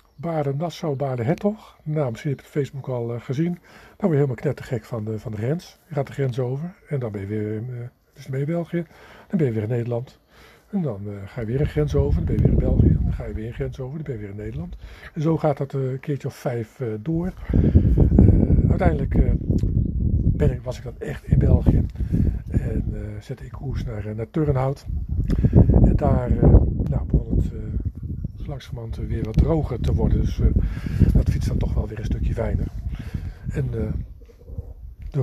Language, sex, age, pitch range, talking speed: Dutch, male, 50-69, 115-150 Hz, 215 wpm